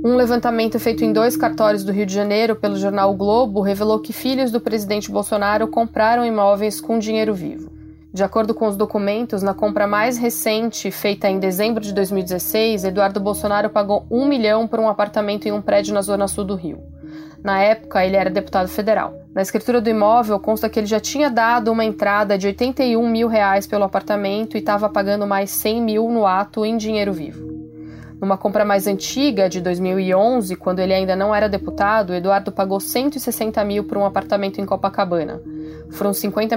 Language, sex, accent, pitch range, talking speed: Portuguese, female, Brazilian, 195-220 Hz, 190 wpm